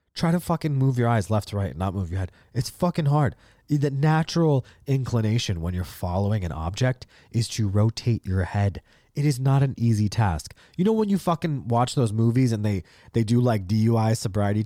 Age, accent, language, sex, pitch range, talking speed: 30-49, American, English, male, 100-135 Hz, 210 wpm